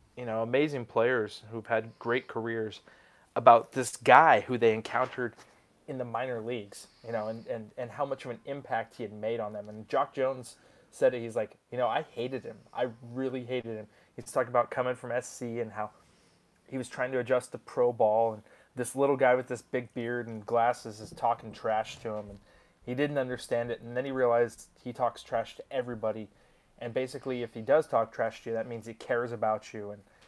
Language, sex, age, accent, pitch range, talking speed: English, male, 20-39, American, 110-125 Hz, 215 wpm